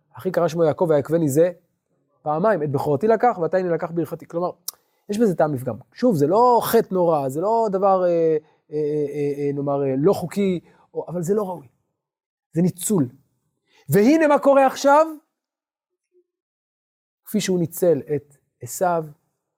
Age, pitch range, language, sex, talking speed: 30-49, 140-180 Hz, Hebrew, male, 155 wpm